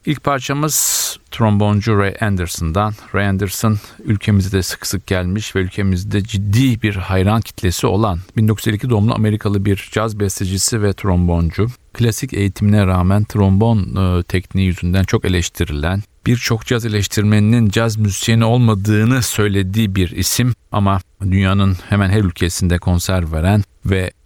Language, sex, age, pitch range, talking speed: Turkish, male, 40-59, 95-105 Hz, 130 wpm